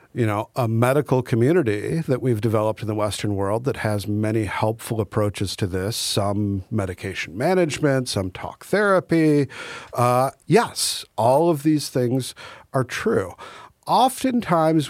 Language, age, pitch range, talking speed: English, 50-69, 105-130 Hz, 135 wpm